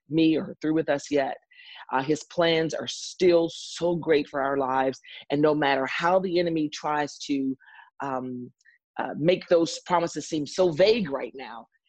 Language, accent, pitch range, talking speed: English, American, 150-190 Hz, 170 wpm